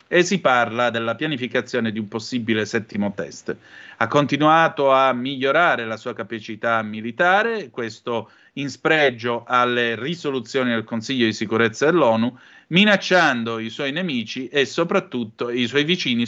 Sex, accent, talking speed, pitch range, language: male, native, 135 wpm, 115-135 Hz, Italian